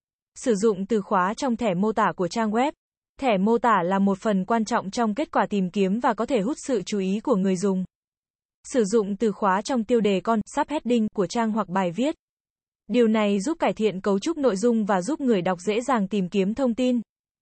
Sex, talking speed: female, 230 wpm